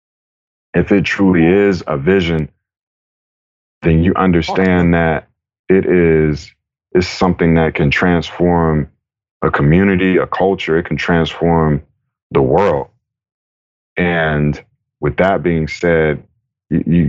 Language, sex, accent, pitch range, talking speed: English, male, American, 80-95 Hz, 110 wpm